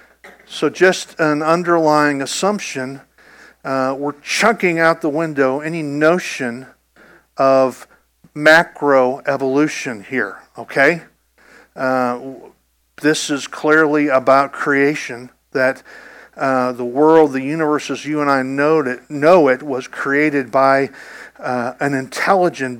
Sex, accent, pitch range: male, American, 130-165 Hz